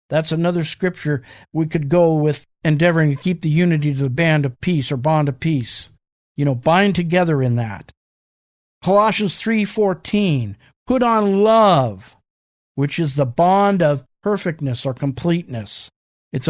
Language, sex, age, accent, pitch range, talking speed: English, male, 50-69, American, 150-195 Hz, 150 wpm